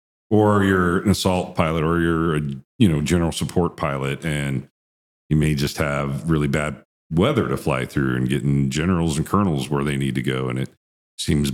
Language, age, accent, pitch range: English, 40-59, American, 65-80 Hz